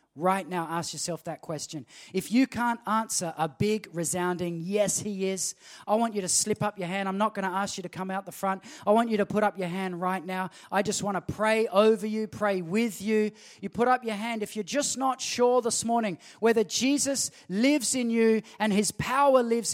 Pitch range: 200-240 Hz